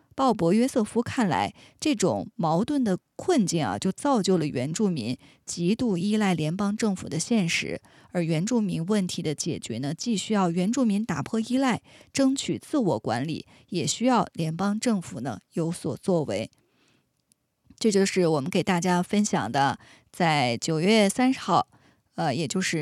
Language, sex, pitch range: Chinese, female, 170-215 Hz